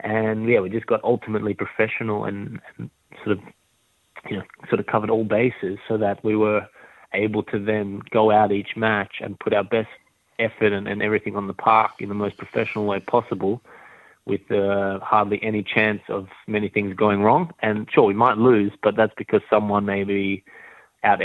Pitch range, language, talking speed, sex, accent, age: 100-110 Hz, English, 190 wpm, male, Australian, 20-39